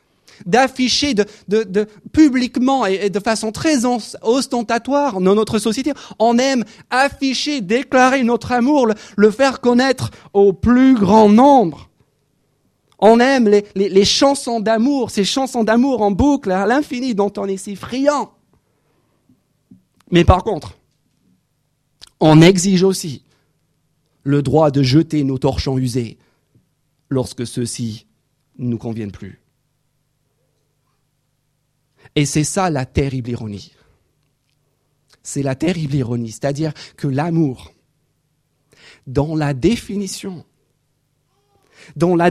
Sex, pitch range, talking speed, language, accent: male, 140-220 Hz, 115 wpm, French, French